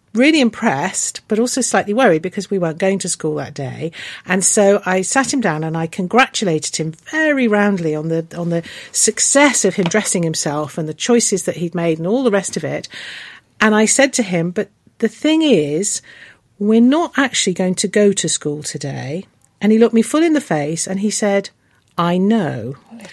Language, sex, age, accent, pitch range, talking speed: English, female, 50-69, British, 170-230 Hz, 200 wpm